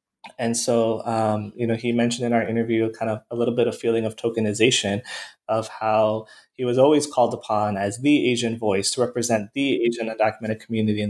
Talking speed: 200 wpm